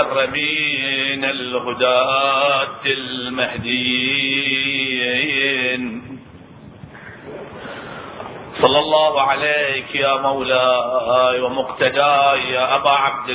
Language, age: Arabic, 40-59